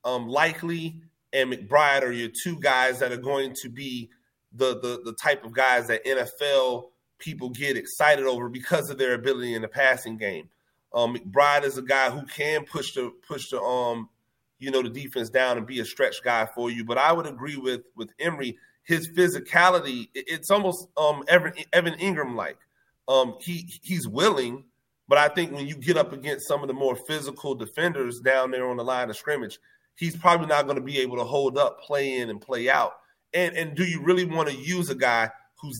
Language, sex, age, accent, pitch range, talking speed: English, male, 30-49, American, 125-160 Hz, 210 wpm